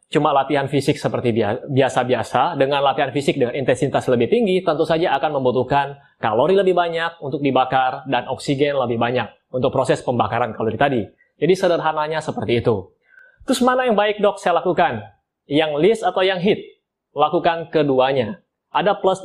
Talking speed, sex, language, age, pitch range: 155 wpm, male, Indonesian, 20-39, 130-175 Hz